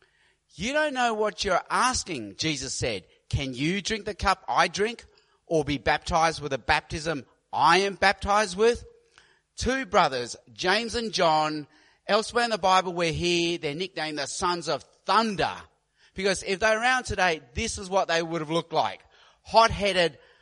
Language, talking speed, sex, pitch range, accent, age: English, 165 wpm, male, 160-220 Hz, Australian, 30-49